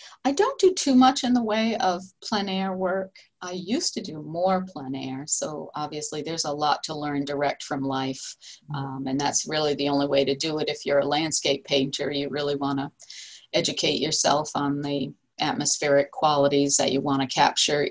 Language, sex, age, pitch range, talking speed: English, female, 50-69, 140-175 Hz, 200 wpm